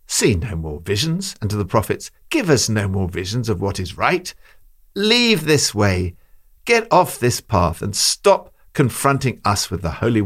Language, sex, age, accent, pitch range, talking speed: English, male, 60-79, British, 100-155 Hz, 180 wpm